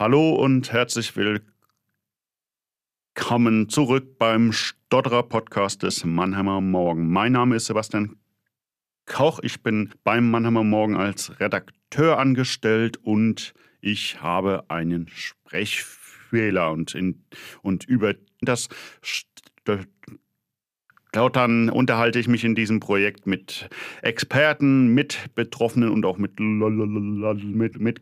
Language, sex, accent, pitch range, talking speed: German, male, German, 105-125 Hz, 100 wpm